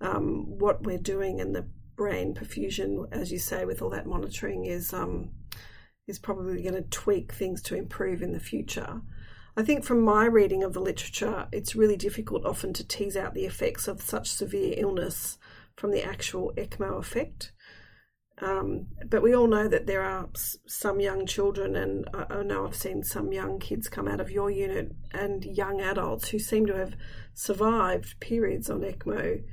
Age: 40-59